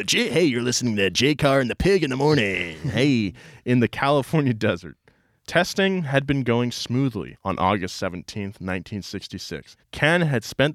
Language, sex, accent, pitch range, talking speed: English, male, American, 95-125 Hz, 155 wpm